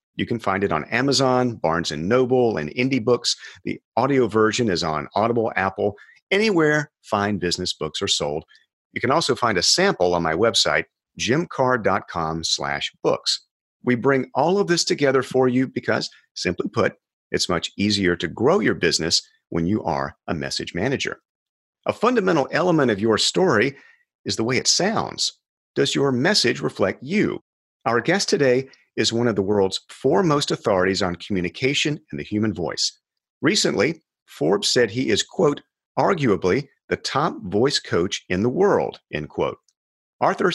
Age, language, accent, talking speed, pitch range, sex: 50-69, English, American, 165 wpm, 95-140 Hz, male